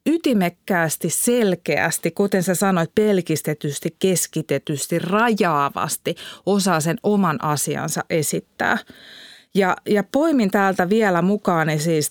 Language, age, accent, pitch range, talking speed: Finnish, 30-49, native, 165-220 Hz, 100 wpm